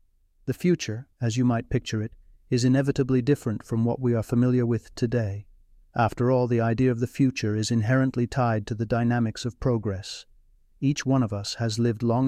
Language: English